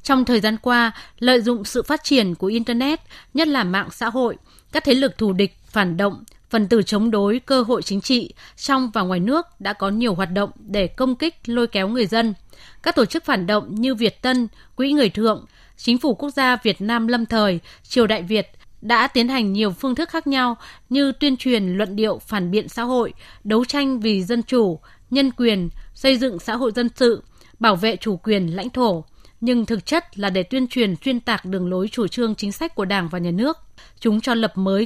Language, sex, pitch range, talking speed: Vietnamese, female, 205-255 Hz, 220 wpm